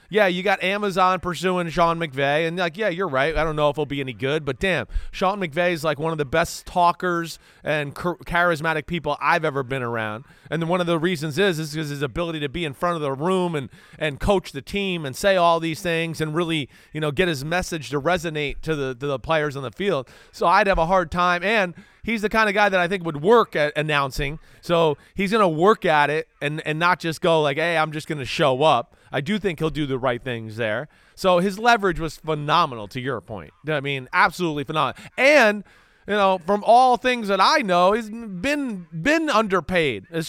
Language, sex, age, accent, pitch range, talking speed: English, male, 30-49, American, 150-195 Hz, 230 wpm